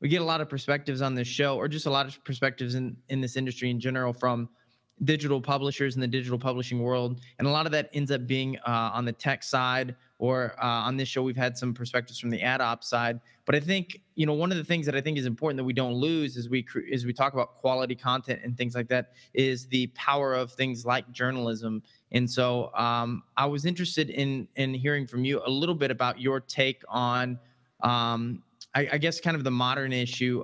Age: 20-39